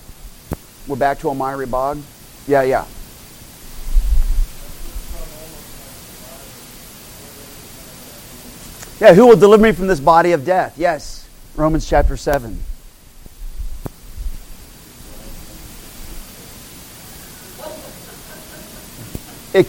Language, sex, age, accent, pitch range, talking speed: English, male, 40-59, American, 140-200 Hz, 70 wpm